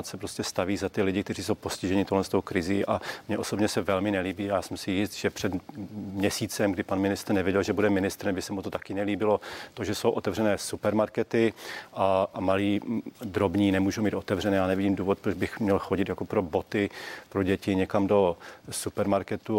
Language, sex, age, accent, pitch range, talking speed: Czech, male, 40-59, native, 95-105 Hz, 195 wpm